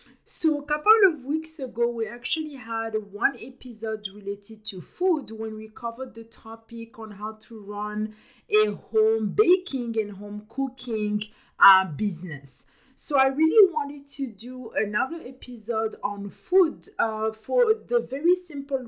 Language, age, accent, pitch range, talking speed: English, 50-69, French, 205-255 Hz, 145 wpm